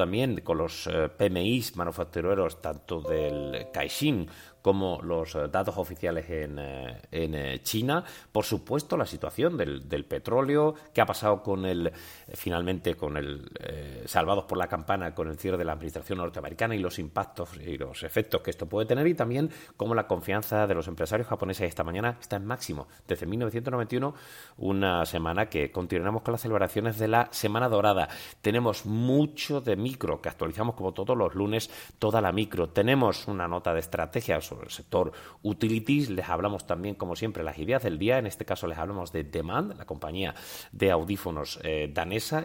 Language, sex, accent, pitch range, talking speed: Spanish, male, Spanish, 85-115 Hz, 170 wpm